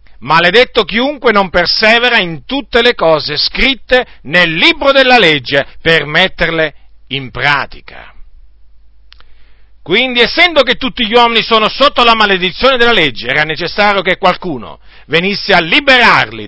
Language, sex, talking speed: Italian, male, 130 wpm